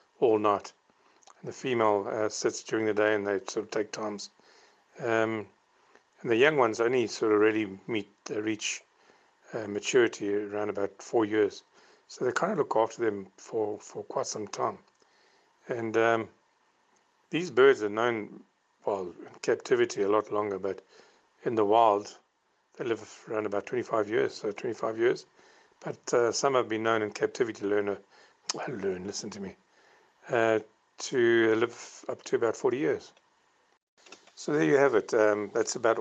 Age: 50-69